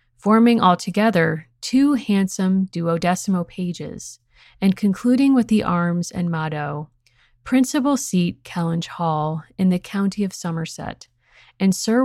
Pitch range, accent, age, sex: 165-205 Hz, American, 30-49, female